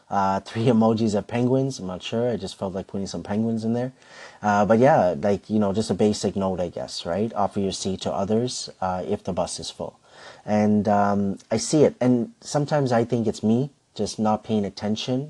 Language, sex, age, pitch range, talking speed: English, male, 30-49, 95-110 Hz, 220 wpm